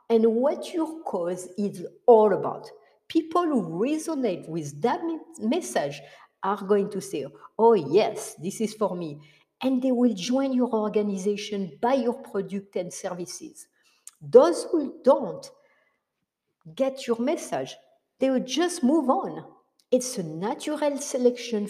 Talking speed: 135 wpm